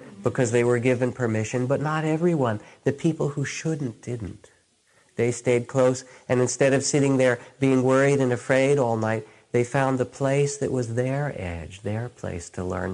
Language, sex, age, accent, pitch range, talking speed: English, male, 50-69, American, 95-120 Hz, 180 wpm